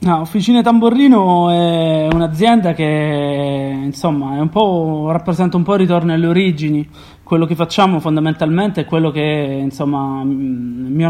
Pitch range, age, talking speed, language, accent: 145-175 Hz, 30-49, 110 wpm, Italian, native